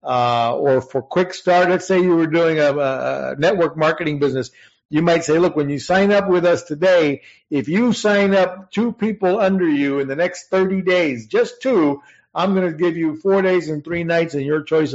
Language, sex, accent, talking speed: English, male, American, 215 wpm